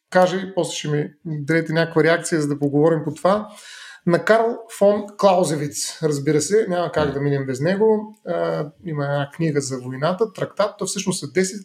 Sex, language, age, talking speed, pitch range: male, Bulgarian, 30-49, 175 wpm, 145-195 Hz